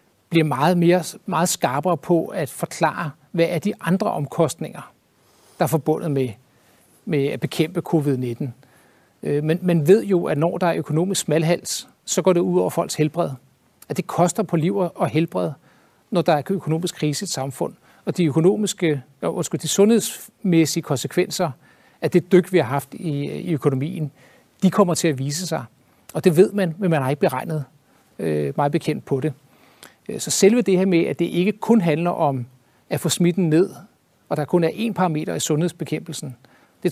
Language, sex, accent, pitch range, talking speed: Danish, male, native, 145-180 Hz, 185 wpm